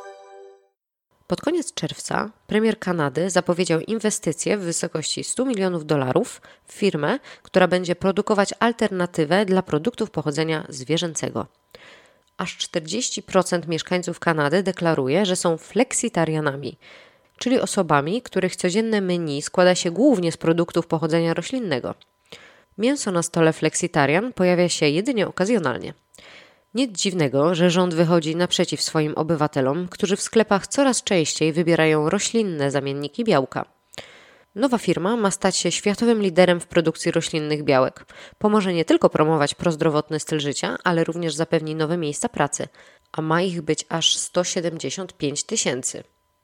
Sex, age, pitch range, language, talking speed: female, 20-39, 155-195 Hz, Polish, 125 wpm